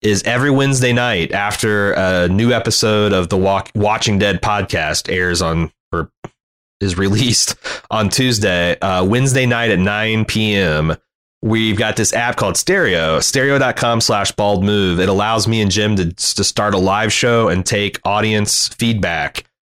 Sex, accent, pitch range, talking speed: male, American, 95-120 Hz, 155 wpm